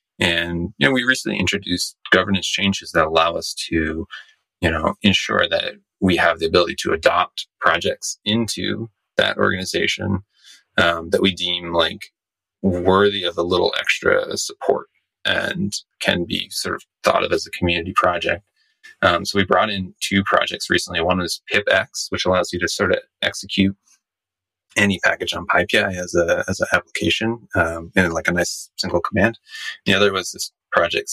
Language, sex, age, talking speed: English, male, 30-49, 170 wpm